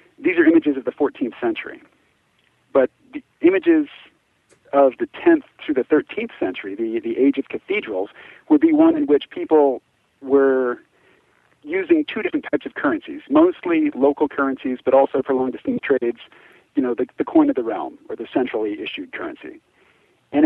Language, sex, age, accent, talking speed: English, male, 50-69, American, 165 wpm